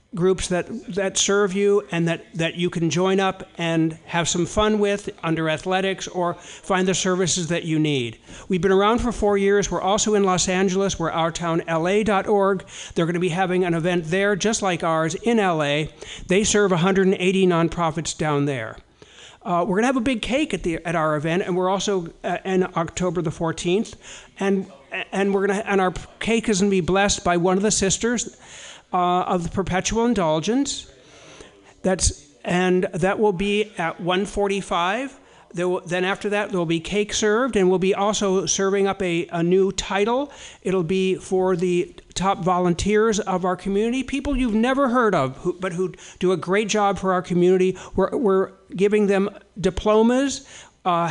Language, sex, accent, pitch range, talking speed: English, male, American, 175-205 Hz, 185 wpm